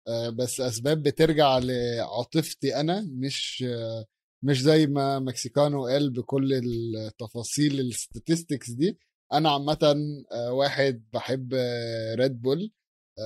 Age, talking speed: 20-39, 95 wpm